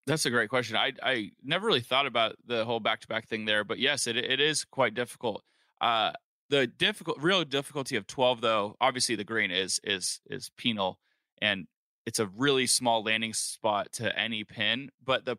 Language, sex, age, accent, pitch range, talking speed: English, male, 20-39, American, 105-125 Hz, 190 wpm